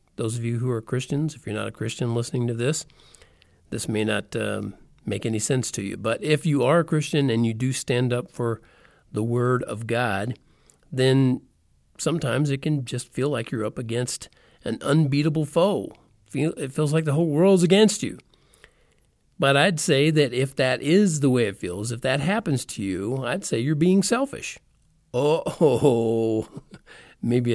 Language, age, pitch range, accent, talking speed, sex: English, 50-69, 120-160 Hz, American, 180 wpm, male